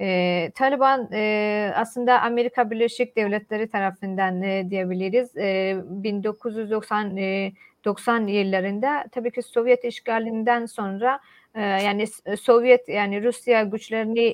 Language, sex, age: Turkish, female, 40-59